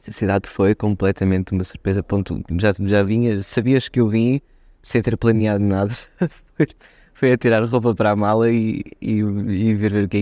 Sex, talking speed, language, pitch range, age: male, 180 wpm, Portuguese, 100-120 Hz, 20-39